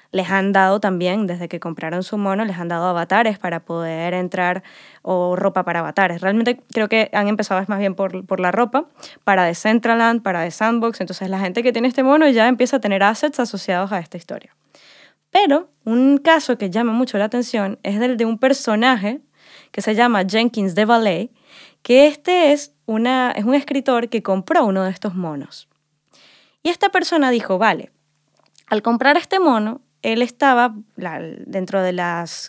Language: Spanish